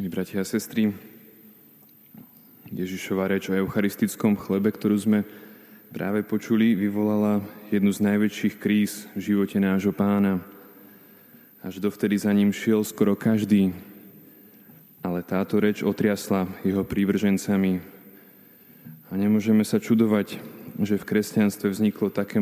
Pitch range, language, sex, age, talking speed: 100-105 Hz, Slovak, male, 20-39, 115 wpm